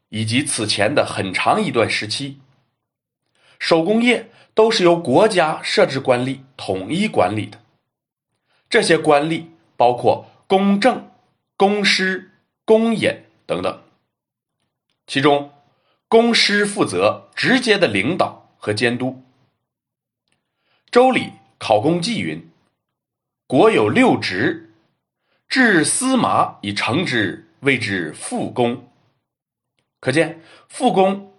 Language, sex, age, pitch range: Chinese, male, 30-49, 120-200 Hz